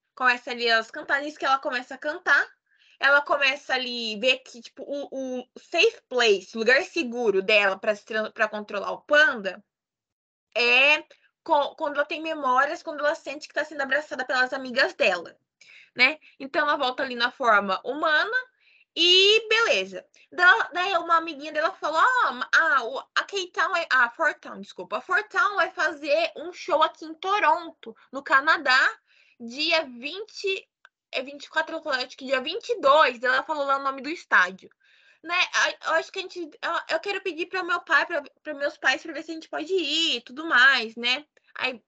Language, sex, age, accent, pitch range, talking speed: Portuguese, female, 20-39, Brazilian, 255-340 Hz, 175 wpm